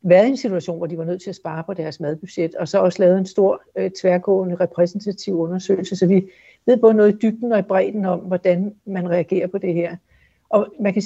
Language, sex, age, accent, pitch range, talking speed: Danish, female, 60-79, native, 175-210 Hz, 240 wpm